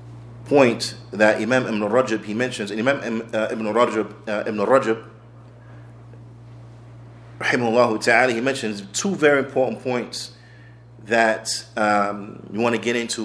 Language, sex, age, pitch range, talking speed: English, male, 30-49, 100-120 Hz, 125 wpm